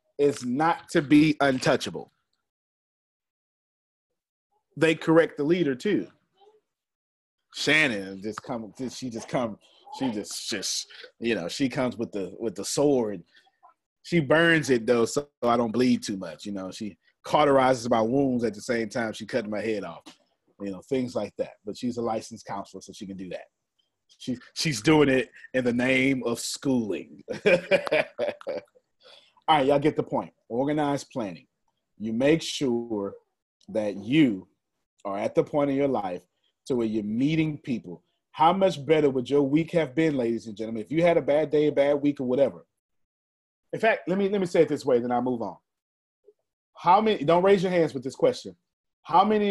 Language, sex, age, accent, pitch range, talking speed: English, male, 30-49, American, 120-165 Hz, 180 wpm